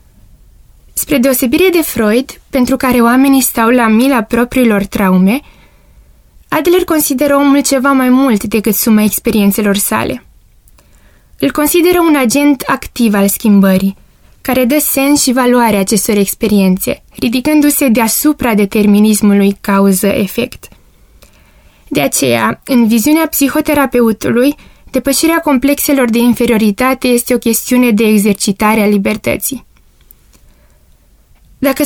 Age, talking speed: 20-39, 105 wpm